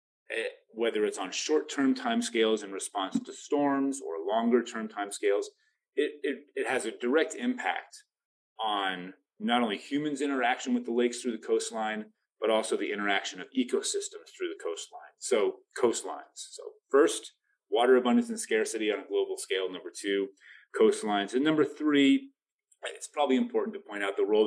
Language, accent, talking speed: English, American, 160 wpm